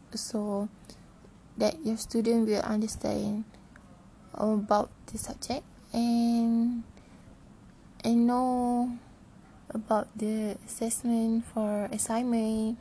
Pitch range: 210-235 Hz